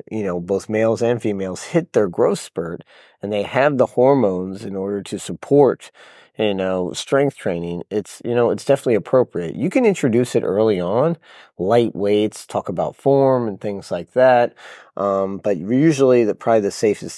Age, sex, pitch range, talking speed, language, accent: 30-49, male, 95-120 Hz, 175 wpm, English, American